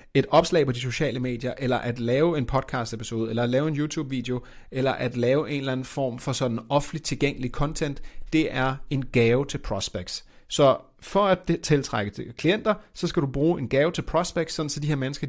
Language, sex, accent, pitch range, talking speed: Danish, male, native, 120-160 Hz, 205 wpm